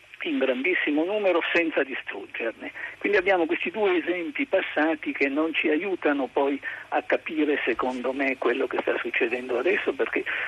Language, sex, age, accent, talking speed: Italian, male, 50-69, native, 150 wpm